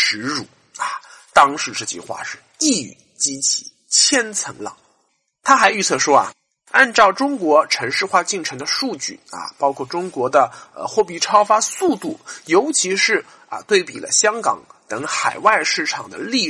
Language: Chinese